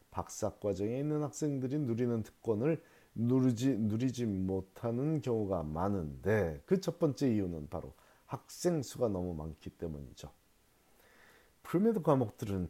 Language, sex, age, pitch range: Korean, male, 40-59, 95-140 Hz